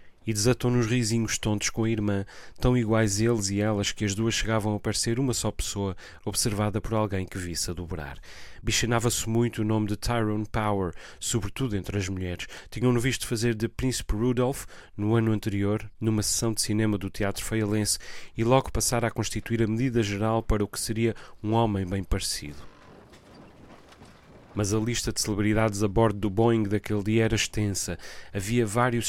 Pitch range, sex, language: 100-115 Hz, male, Portuguese